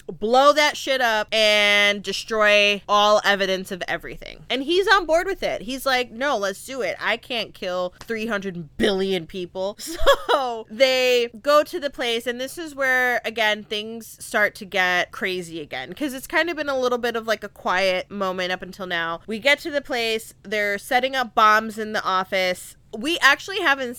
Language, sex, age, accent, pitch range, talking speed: English, female, 20-39, American, 205-270 Hz, 190 wpm